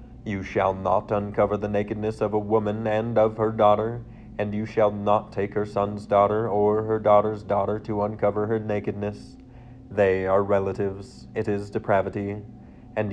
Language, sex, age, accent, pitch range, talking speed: English, male, 30-49, American, 100-110 Hz, 165 wpm